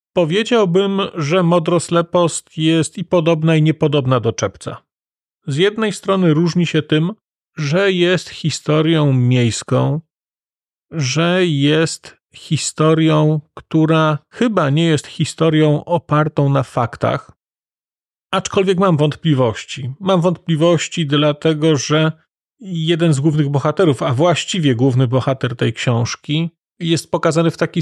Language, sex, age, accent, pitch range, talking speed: Polish, male, 40-59, native, 150-175 Hz, 110 wpm